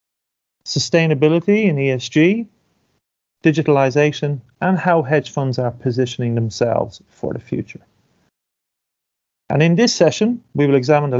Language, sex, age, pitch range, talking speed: English, male, 30-49, 125-170 Hz, 120 wpm